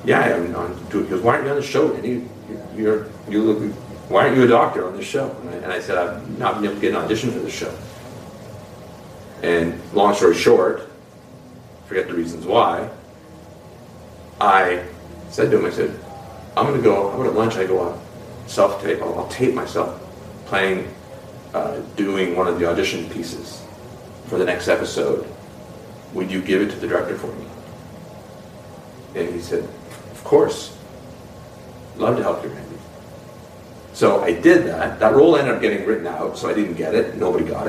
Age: 40-59